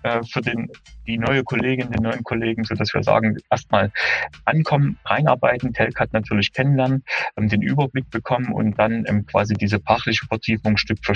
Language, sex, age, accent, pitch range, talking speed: German, male, 30-49, German, 105-125 Hz, 160 wpm